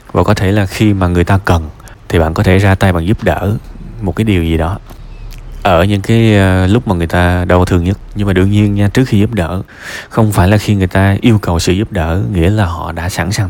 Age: 20-39